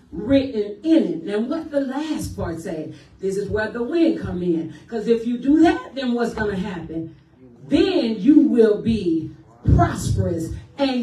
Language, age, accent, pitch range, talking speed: English, 40-59, American, 215-310 Hz, 175 wpm